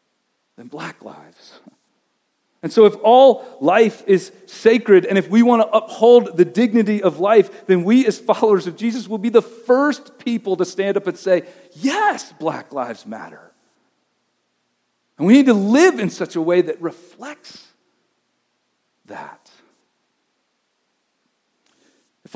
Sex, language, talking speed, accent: male, English, 140 wpm, American